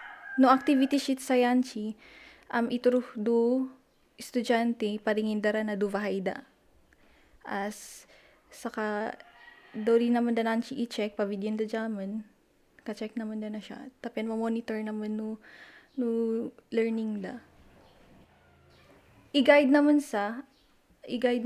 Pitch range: 210-250 Hz